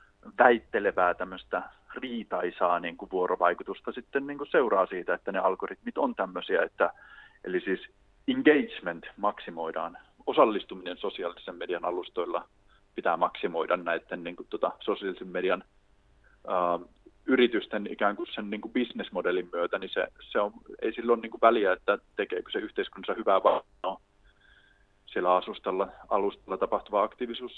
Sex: male